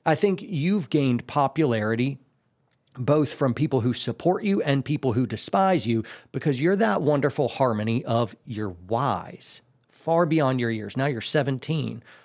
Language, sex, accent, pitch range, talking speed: English, male, American, 120-155 Hz, 150 wpm